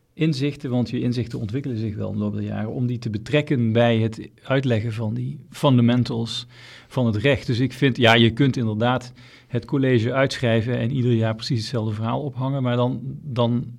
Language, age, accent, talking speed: Dutch, 40-59, Dutch, 195 wpm